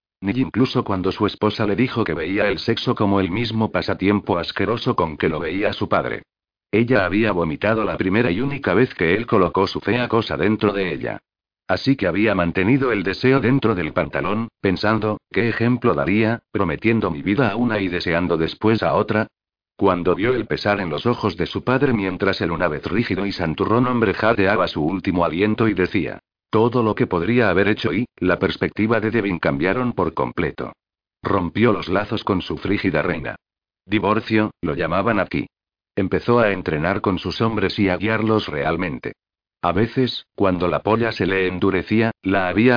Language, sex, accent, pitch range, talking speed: Spanish, male, Spanish, 95-115 Hz, 185 wpm